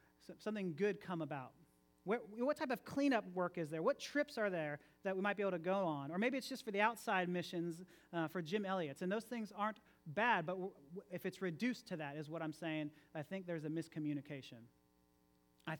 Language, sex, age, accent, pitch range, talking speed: English, male, 40-59, American, 150-210 Hz, 215 wpm